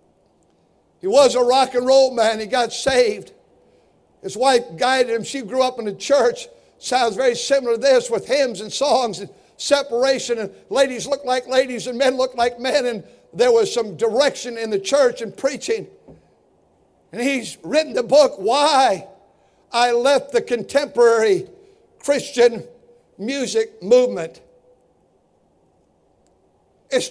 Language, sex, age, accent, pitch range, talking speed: English, male, 60-79, American, 240-290 Hz, 145 wpm